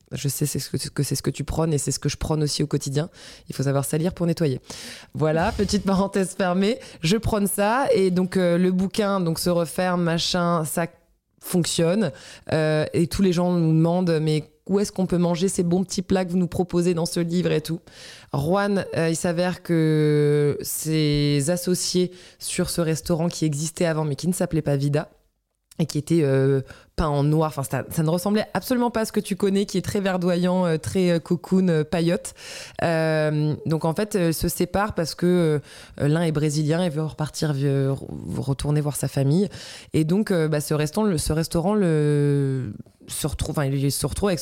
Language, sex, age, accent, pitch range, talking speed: French, female, 20-39, French, 150-180 Hz, 200 wpm